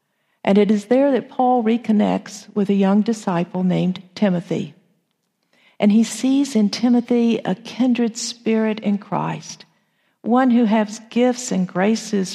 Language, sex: English, female